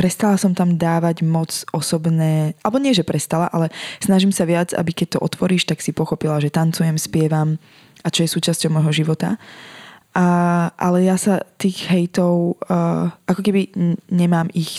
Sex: female